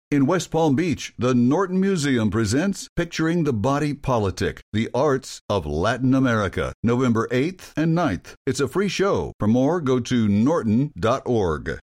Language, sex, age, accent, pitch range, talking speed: English, male, 60-79, American, 115-150 Hz, 150 wpm